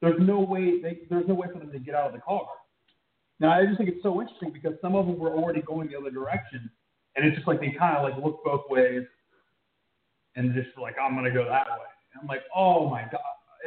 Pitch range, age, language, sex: 150-210 Hz, 30-49, English, male